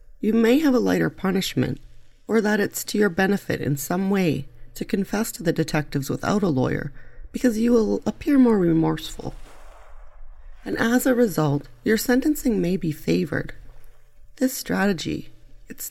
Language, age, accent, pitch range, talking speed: English, 40-59, American, 140-205 Hz, 155 wpm